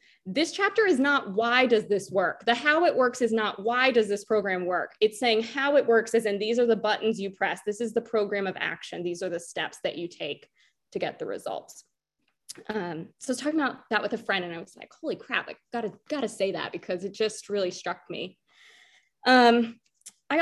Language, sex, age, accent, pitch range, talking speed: English, female, 20-39, American, 190-230 Hz, 230 wpm